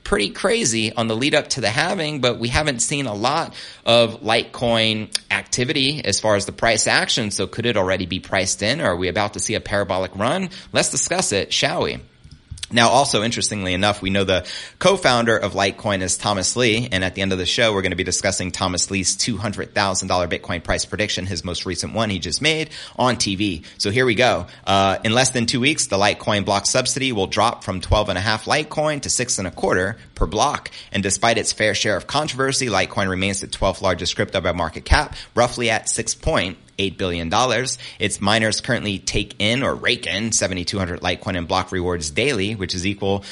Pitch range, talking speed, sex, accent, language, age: 95-115 Hz, 210 wpm, male, American, English, 30-49